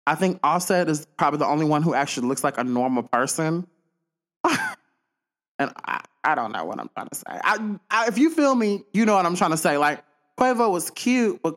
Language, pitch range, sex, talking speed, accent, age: English, 135-180 Hz, male, 225 wpm, American, 20-39